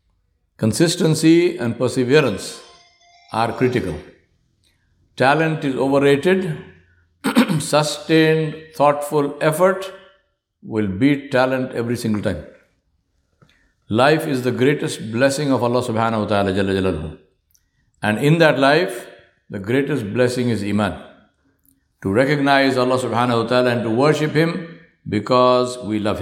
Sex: male